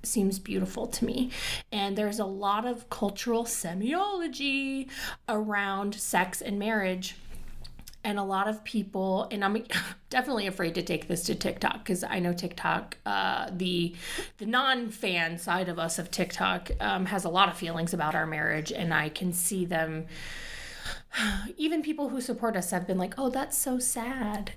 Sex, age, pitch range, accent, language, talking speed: female, 30-49, 190-230 Hz, American, English, 165 wpm